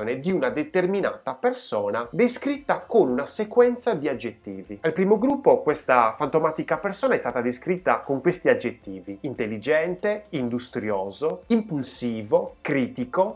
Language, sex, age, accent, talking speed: Italian, male, 30-49, native, 115 wpm